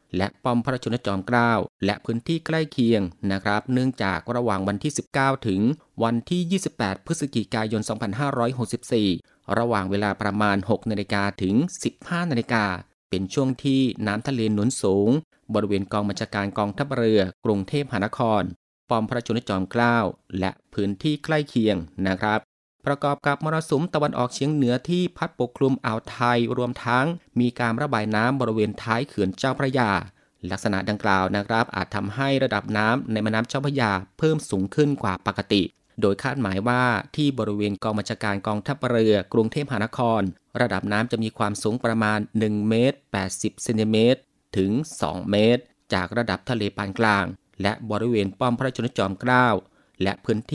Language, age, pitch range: Thai, 30-49, 100-125 Hz